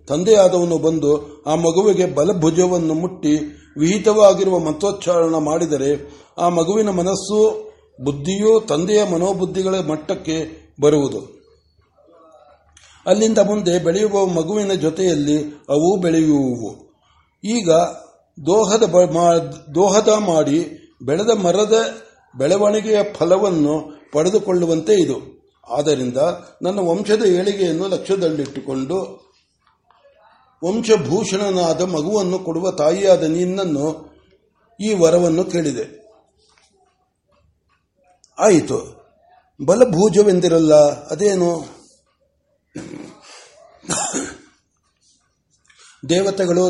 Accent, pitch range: native, 160-200 Hz